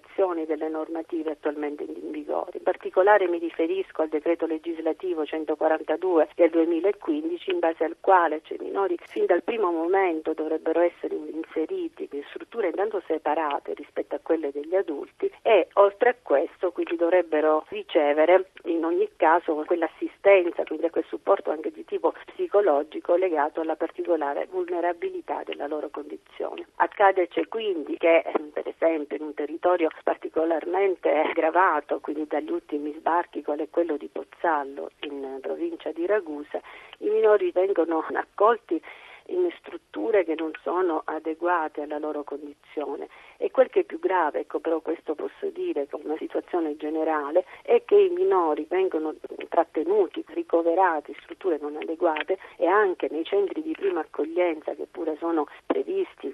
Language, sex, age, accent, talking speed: Italian, female, 50-69, native, 145 wpm